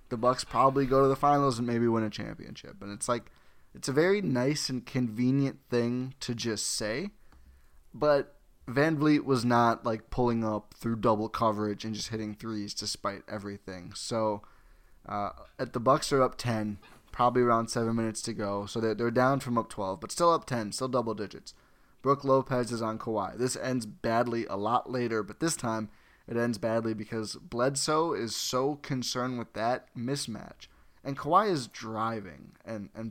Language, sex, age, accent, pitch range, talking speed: English, male, 20-39, American, 110-135 Hz, 185 wpm